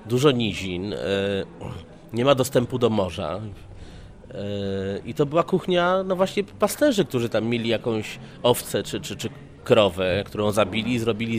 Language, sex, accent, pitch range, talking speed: Polish, male, native, 105-130 Hz, 140 wpm